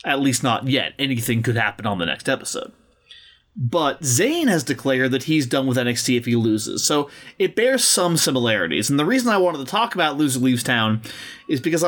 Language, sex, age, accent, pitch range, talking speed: English, male, 30-49, American, 125-160 Hz, 205 wpm